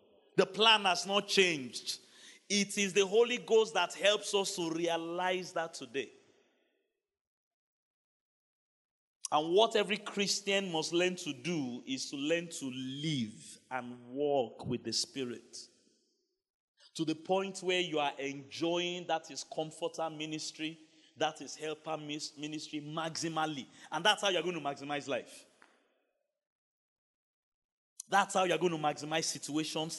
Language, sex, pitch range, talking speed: English, male, 150-200 Hz, 135 wpm